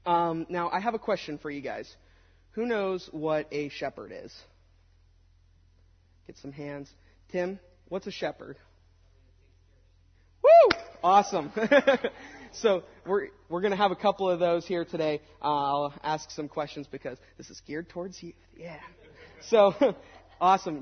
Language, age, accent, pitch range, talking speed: English, 30-49, American, 140-170 Hz, 140 wpm